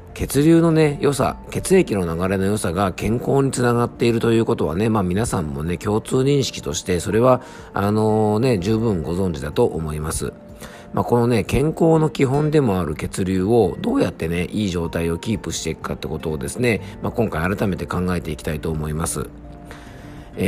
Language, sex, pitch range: Japanese, male, 85-115 Hz